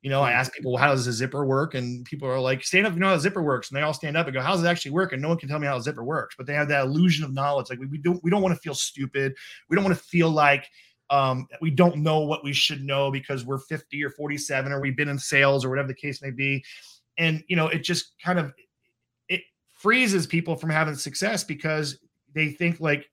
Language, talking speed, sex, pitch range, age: English, 285 wpm, male, 135-180 Hz, 20-39